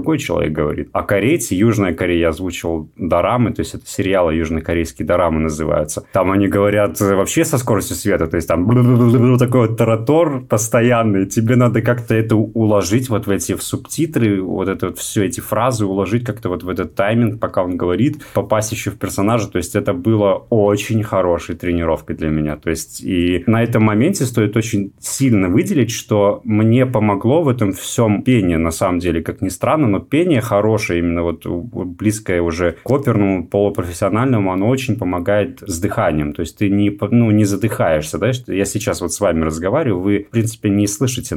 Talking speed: 180 wpm